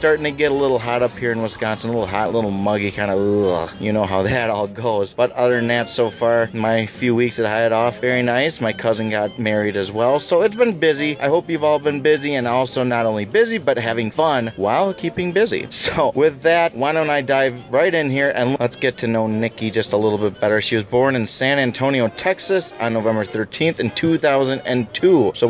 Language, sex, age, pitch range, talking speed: English, male, 30-49, 115-155 Hz, 235 wpm